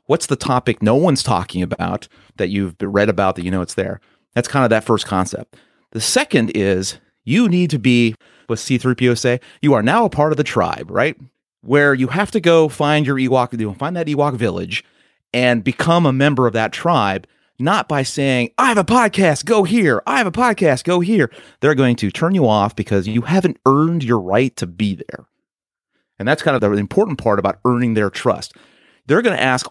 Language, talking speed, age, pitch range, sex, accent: English, 215 wpm, 30-49, 110-150 Hz, male, American